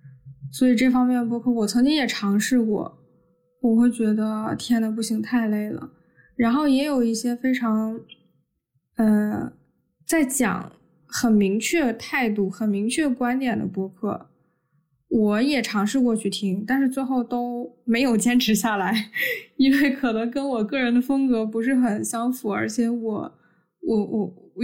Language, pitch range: Chinese, 210-260 Hz